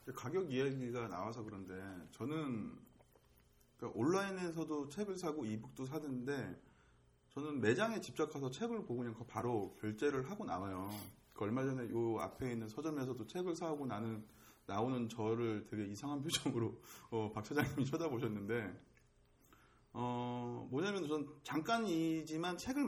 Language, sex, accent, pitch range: Korean, male, native, 110-155 Hz